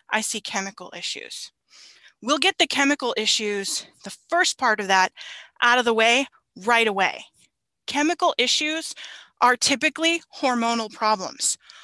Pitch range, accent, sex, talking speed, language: 210-275 Hz, American, female, 130 wpm, English